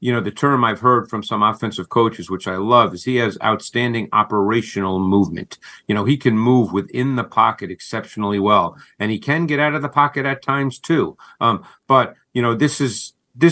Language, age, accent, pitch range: English, 50-69, American, 110-135 Hz